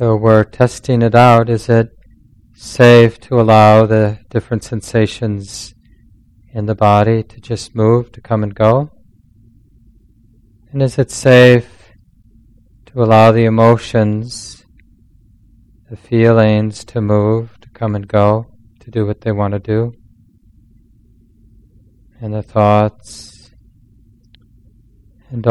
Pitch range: 110-115 Hz